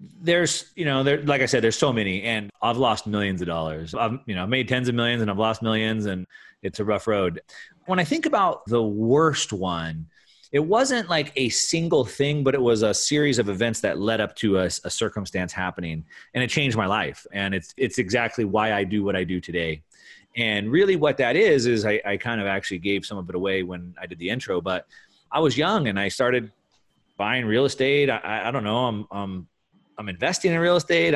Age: 30-49